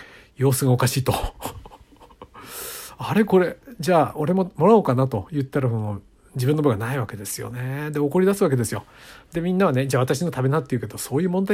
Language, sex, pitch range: Japanese, male, 125-165 Hz